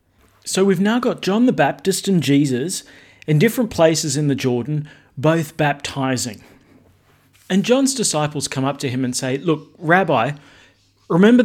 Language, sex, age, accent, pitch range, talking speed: English, male, 40-59, Australian, 125-165 Hz, 150 wpm